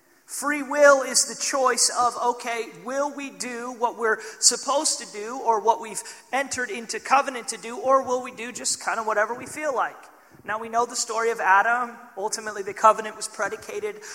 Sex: male